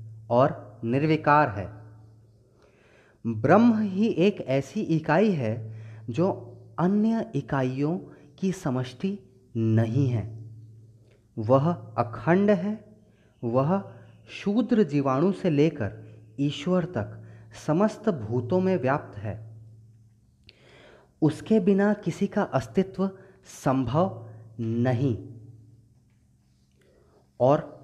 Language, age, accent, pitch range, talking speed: Hindi, 30-49, native, 110-155 Hz, 85 wpm